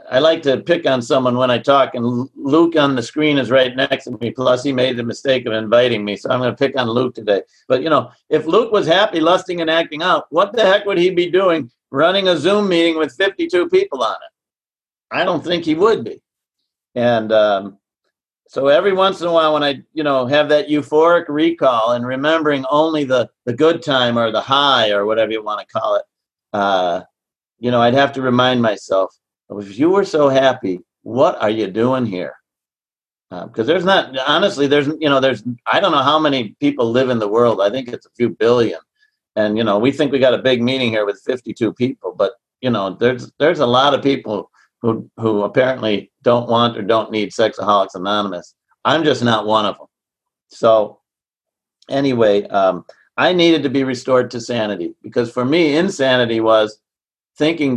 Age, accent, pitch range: 50-69, American, 115-155 Hz